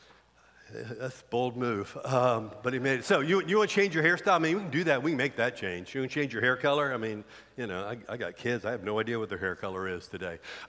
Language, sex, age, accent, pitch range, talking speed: English, male, 50-69, American, 115-150 Hz, 300 wpm